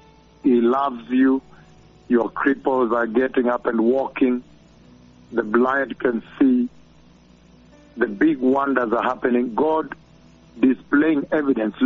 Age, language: 60-79, English